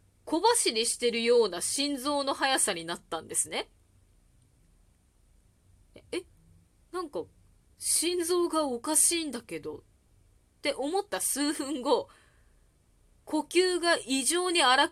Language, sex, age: Japanese, female, 20-39